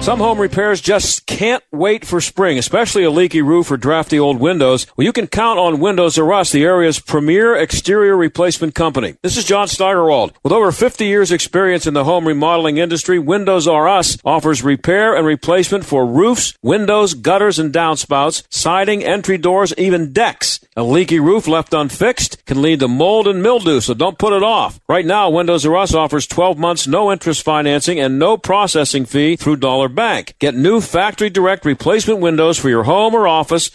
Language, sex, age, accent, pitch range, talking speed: English, male, 50-69, American, 145-195 Hz, 190 wpm